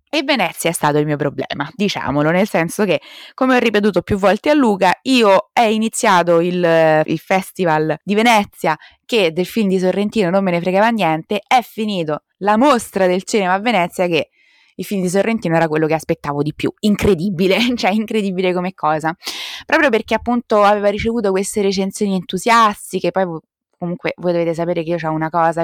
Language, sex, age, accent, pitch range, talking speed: Italian, female, 20-39, native, 160-215 Hz, 185 wpm